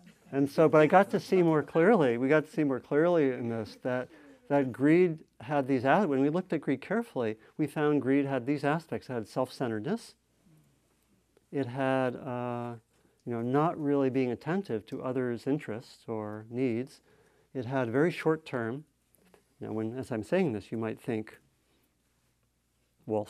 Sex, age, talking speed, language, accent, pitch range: male, 50-69, 170 wpm, English, American, 120-155 Hz